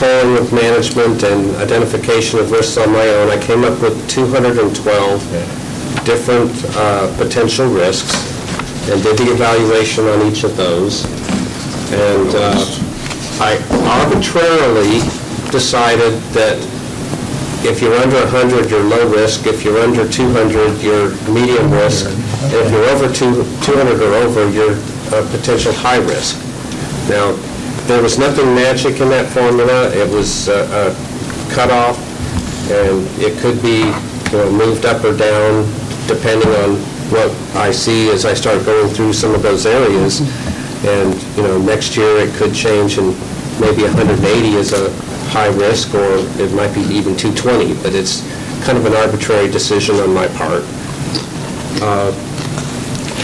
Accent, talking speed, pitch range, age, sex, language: American, 140 wpm, 105-125 Hz, 50-69, male, English